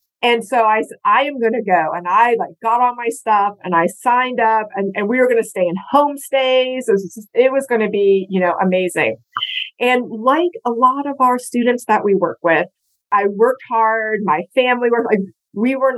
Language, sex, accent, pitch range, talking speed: English, female, American, 185-235 Hz, 215 wpm